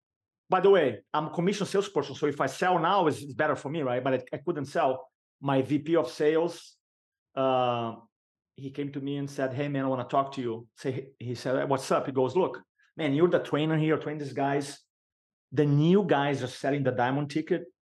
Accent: Brazilian